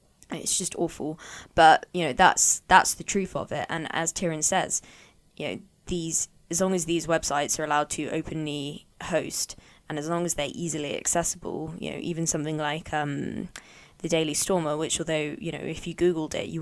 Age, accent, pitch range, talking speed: 20-39, British, 150-165 Hz, 195 wpm